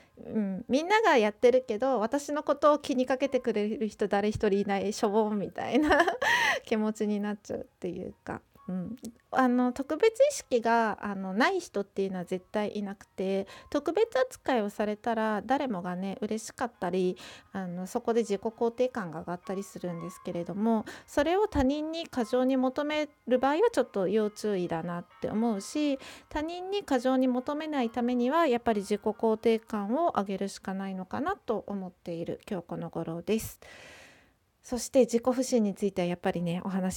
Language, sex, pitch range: Japanese, female, 200-260 Hz